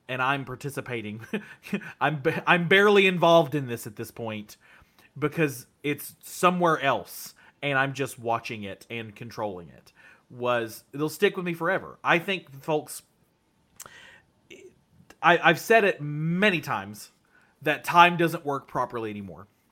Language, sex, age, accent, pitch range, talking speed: English, male, 30-49, American, 130-190 Hz, 135 wpm